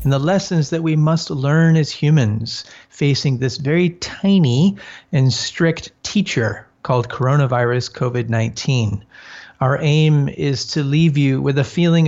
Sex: male